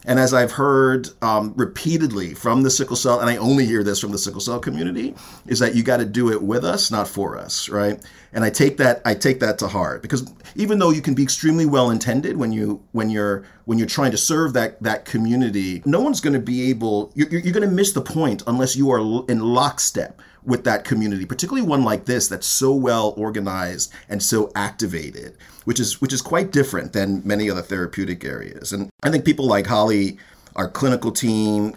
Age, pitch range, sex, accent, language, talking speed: 40-59, 100-130 Hz, male, American, English, 215 wpm